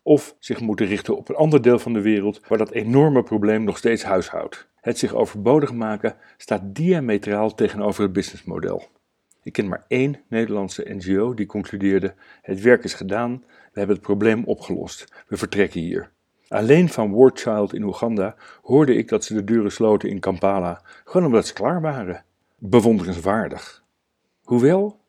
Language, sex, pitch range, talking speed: Dutch, male, 100-125 Hz, 165 wpm